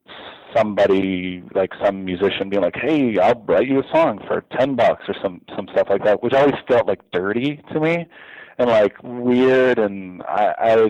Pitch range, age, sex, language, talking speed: 95-120 Hz, 30-49, male, English, 185 wpm